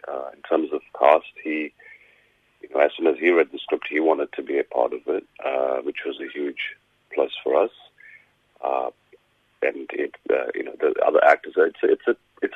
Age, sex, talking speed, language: 40-59, male, 210 wpm, English